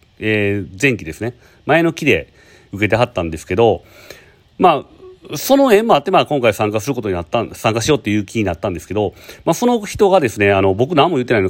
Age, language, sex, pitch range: 40-59, Japanese, male, 95-140 Hz